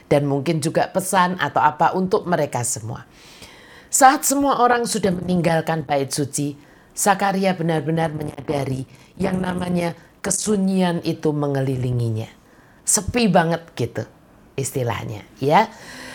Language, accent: Indonesian, native